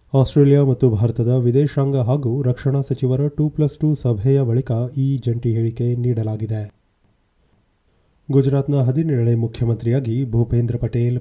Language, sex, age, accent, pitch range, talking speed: Kannada, male, 30-49, native, 115-135 Hz, 90 wpm